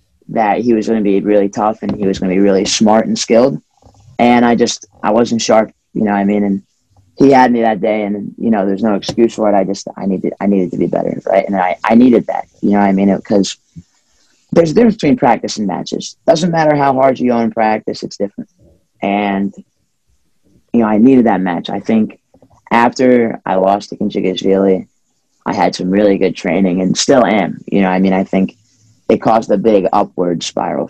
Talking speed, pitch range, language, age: 225 wpm, 100-120 Hz, English, 30-49